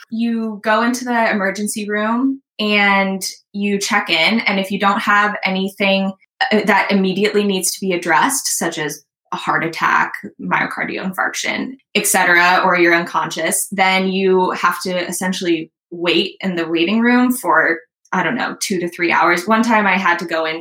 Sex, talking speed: female, 170 wpm